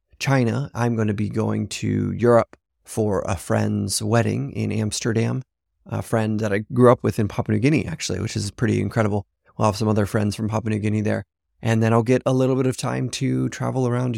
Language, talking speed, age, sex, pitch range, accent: English, 220 wpm, 20-39, male, 105-120 Hz, American